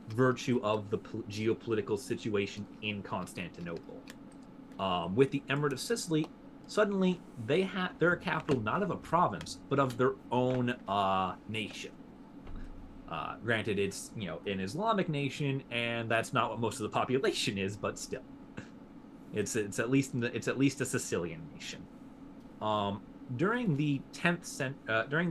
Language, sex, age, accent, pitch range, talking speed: English, male, 30-49, American, 115-170 Hz, 145 wpm